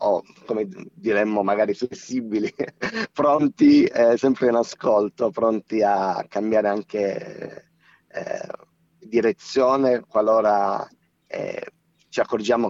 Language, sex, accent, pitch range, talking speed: Italian, male, native, 110-140 Hz, 95 wpm